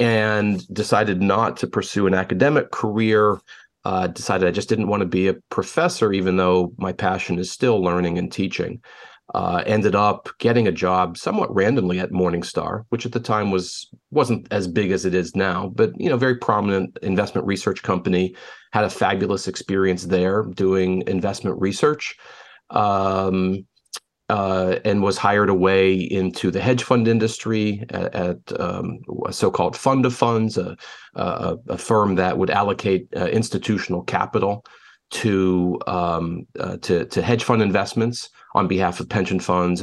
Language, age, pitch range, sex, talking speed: English, 40-59, 95-110 Hz, male, 160 wpm